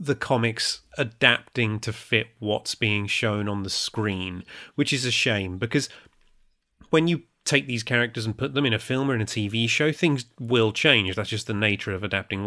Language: English